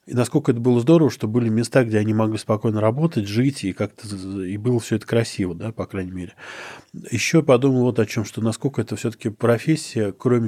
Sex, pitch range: male, 105-125 Hz